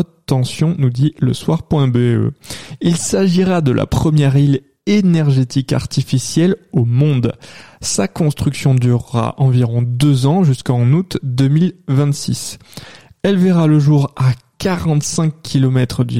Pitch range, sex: 130-160 Hz, male